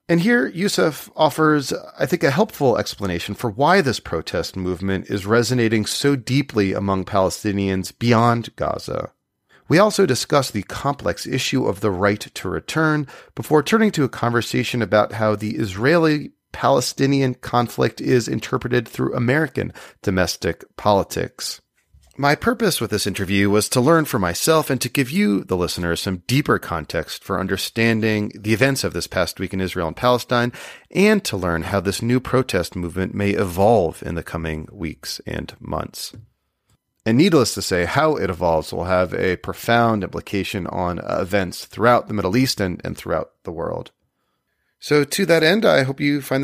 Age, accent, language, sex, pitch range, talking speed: 30-49, American, English, male, 100-140 Hz, 165 wpm